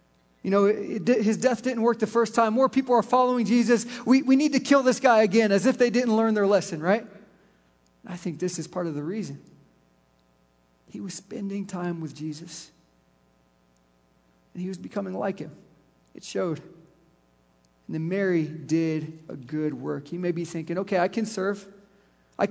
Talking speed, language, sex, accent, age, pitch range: 180 wpm, English, male, American, 40-59, 150-210 Hz